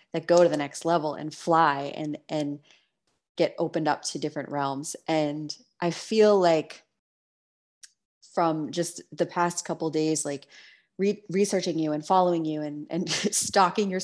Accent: American